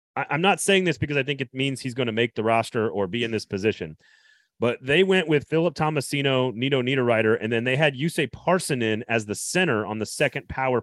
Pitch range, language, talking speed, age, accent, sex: 110-150 Hz, English, 235 wpm, 30-49, American, male